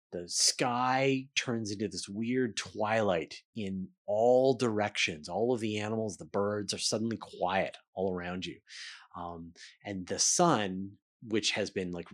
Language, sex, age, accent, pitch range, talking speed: English, male, 30-49, American, 95-125 Hz, 150 wpm